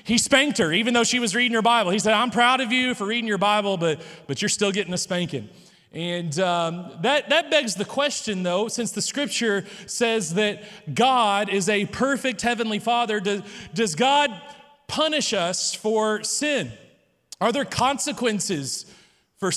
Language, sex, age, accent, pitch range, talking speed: English, male, 30-49, American, 195-245 Hz, 175 wpm